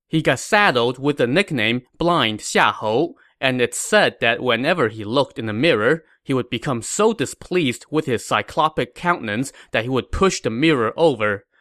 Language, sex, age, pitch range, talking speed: English, male, 20-39, 120-165 Hz, 175 wpm